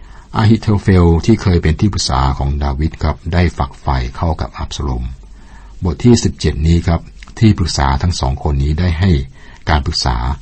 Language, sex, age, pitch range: Thai, male, 60-79, 70-95 Hz